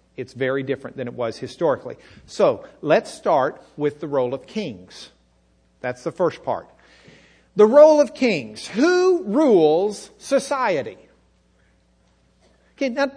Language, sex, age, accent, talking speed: English, male, 50-69, American, 125 wpm